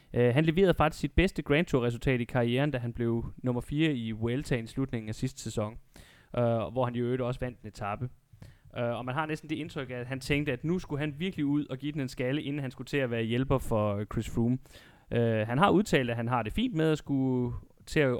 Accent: native